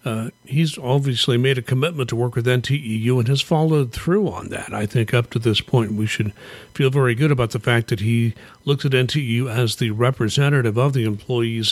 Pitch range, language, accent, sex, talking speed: 115-140 Hz, English, American, male, 210 wpm